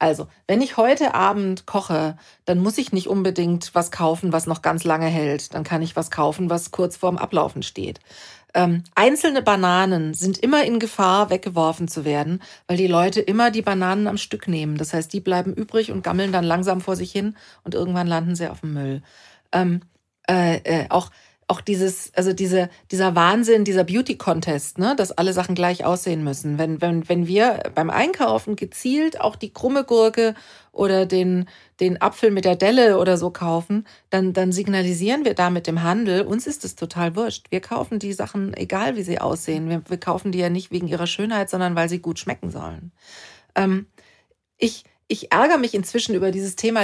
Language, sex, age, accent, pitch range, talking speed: German, female, 40-59, German, 170-205 Hz, 195 wpm